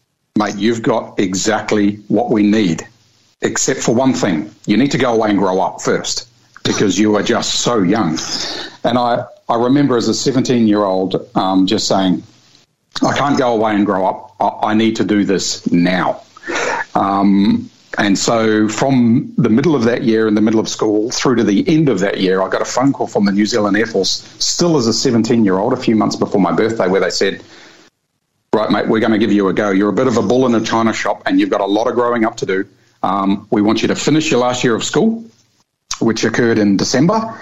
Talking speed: 225 wpm